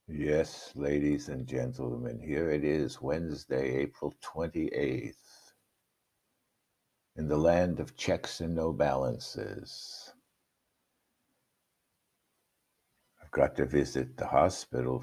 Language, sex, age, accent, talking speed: English, male, 60-79, American, 95 wpm